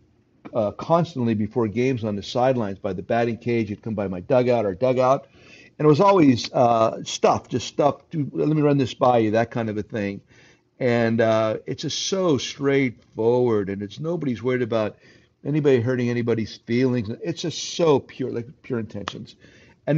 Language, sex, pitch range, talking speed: English, male, 110-135 Hz, 180 wpm